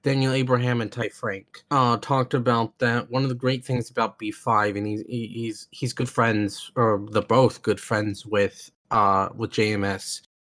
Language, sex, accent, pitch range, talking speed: English, male, American, 105-130 Hz, 185 wpm